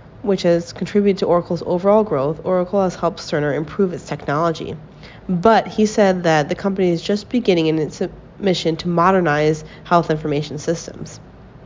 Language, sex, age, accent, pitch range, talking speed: English, female, 30-49, American, 155-195 Hz, 160 wpm